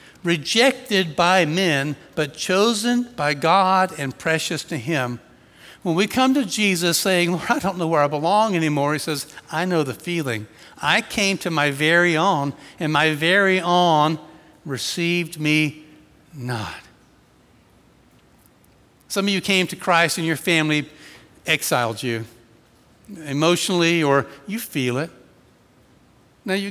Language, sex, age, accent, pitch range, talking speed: English, male, 60-79, American, 150-185 Hz, 135 wpm